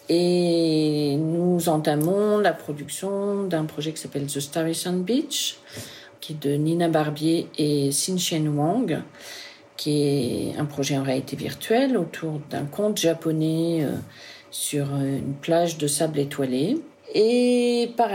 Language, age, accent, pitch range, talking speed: English, 50-69, French, 150-200 Hz, 130 wpm